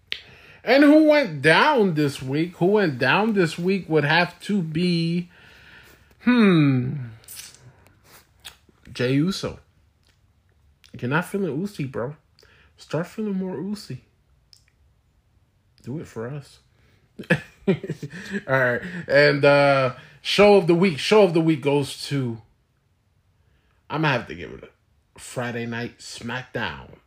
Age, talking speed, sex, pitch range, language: 20-39, 125 wpm, male, 120-165 Hz, English